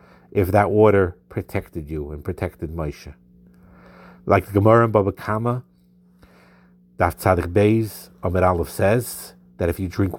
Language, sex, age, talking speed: English, male, 50-69, 135 wpm